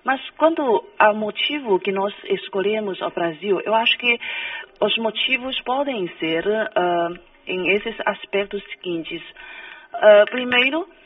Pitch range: 190-300 Hz